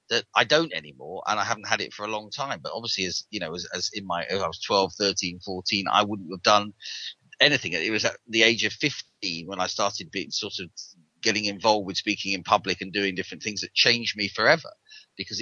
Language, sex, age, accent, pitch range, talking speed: English, male, 30-49, British, 100-120 Hz, 235 wpm